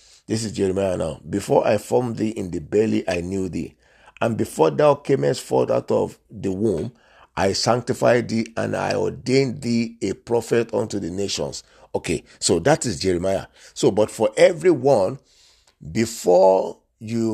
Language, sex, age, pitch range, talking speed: English, male, 50-69, 105-130 Hz, 160 wpm